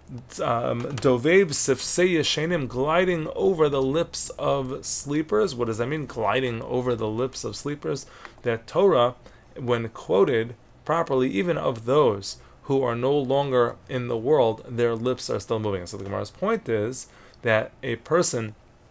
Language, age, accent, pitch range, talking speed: English, 30-49, American, 105-130 Hz, 150 wpm